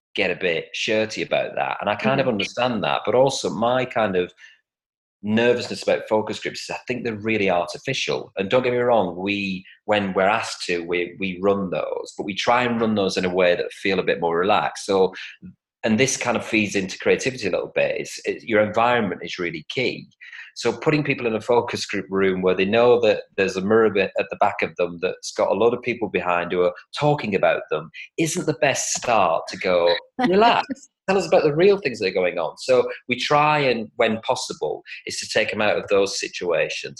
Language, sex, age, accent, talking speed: English, male, 30-49, British, 220 wpm